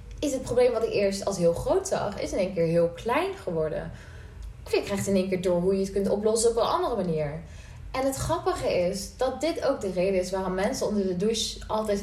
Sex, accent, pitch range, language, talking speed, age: female, Dutch, 165-220 Hz, Dutch, 245 wpm, 20-39